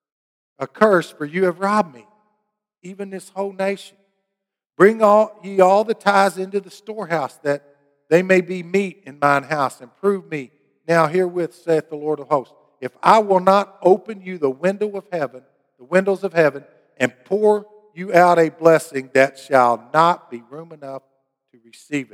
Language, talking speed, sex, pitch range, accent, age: English, 180 wpm, male, 140-200 Hz, American, 50-69